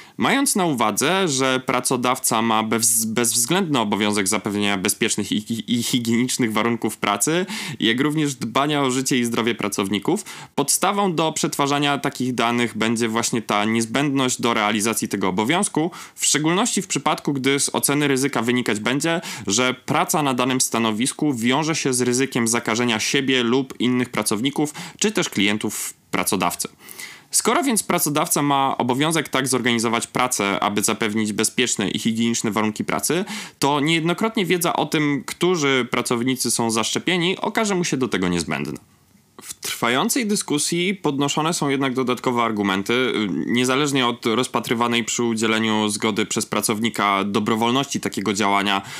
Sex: male